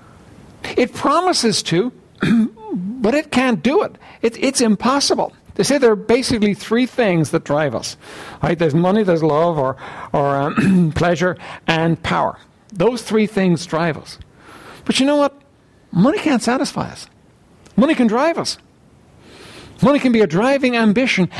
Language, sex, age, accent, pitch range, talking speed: English, male, 60-79, American, 180-255 Hz, 150 wpm